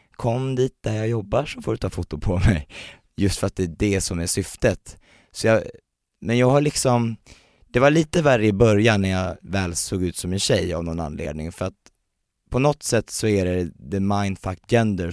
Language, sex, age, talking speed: Swedish, male, 20-39, 220 wpm